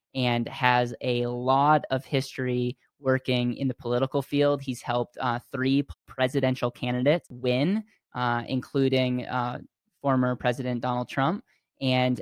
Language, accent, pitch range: English, American, 125-140 Hz